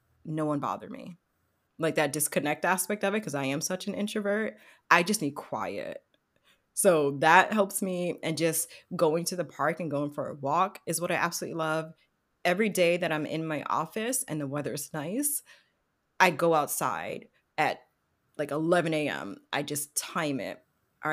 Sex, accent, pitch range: female, American, 150-200 Hz